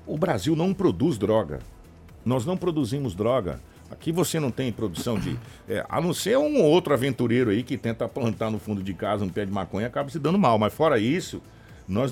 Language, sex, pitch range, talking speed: Portuguese, male, 105-145 Hz, 205 wpm